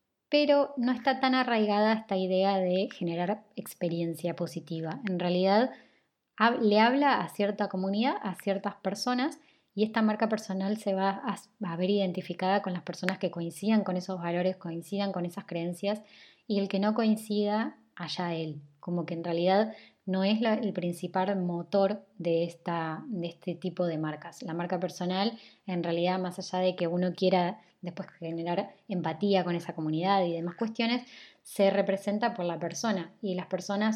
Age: 20-39